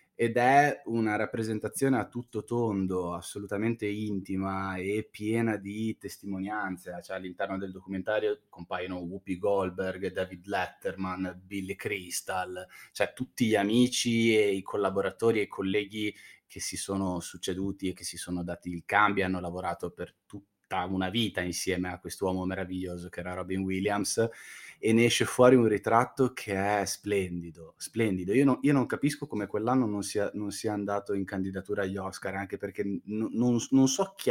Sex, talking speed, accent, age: male, 155 wpm, native, 20-39